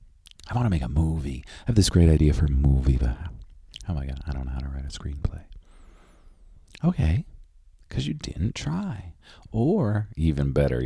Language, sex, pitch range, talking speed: English, male, 70-90 Hz, 190 wpm